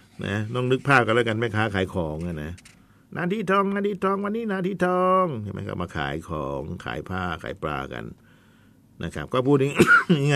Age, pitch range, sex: 60-79, 90-135 Hz, male